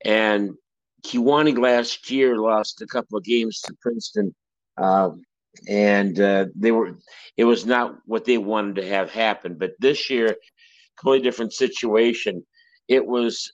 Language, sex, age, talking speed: English, male, 60-79, 145 wpm